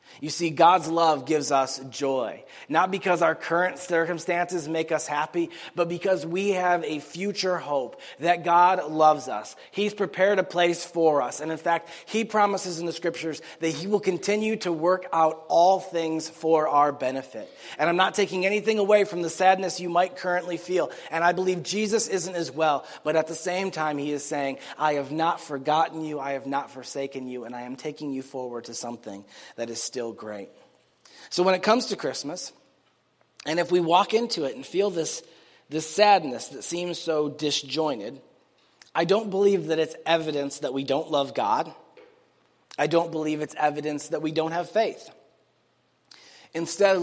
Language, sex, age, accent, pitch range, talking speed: English, male, 30-49, American, 145-180 Hz, 185 wpm